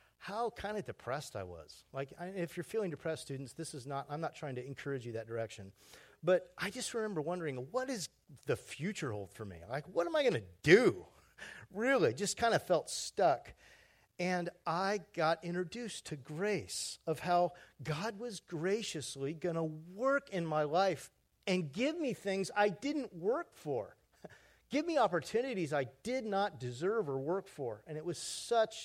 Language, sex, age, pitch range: English, male, 40-59, 150-205 Hz